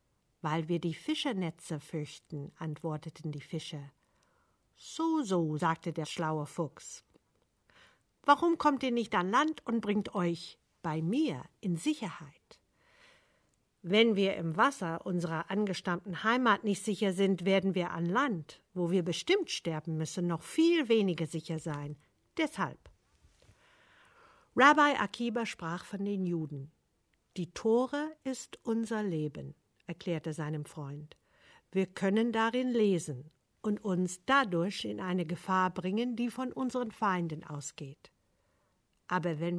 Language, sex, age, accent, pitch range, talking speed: German, female, 50-69, German, 160-225 Hz, 125 wpm